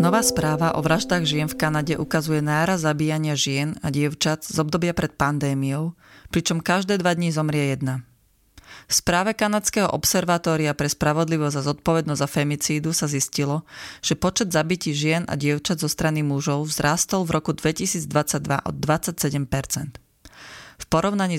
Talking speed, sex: 145 wpm, female